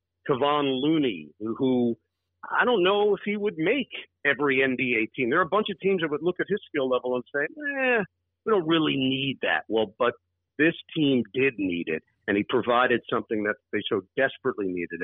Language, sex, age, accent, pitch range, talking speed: English, male, 50-69, American, 110-155 Hz, 205 wpm